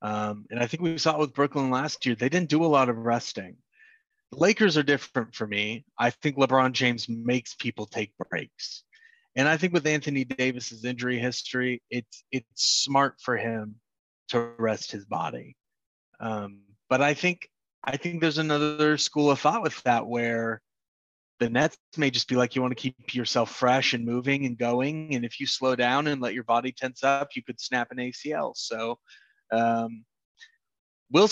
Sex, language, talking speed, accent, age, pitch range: male, English, 190 wpm, American, 30-49, 115-145 Hz